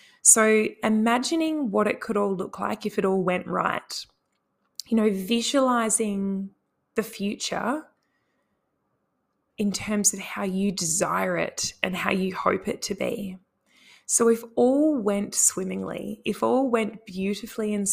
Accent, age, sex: Australian, 20-39, female